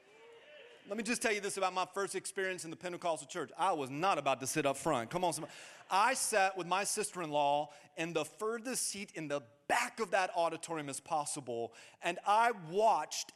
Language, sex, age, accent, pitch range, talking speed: English, male, 30-49, American, 145-215 Hz, 200 wpm